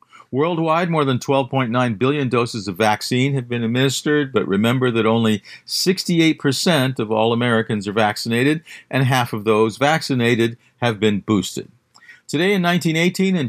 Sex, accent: male, American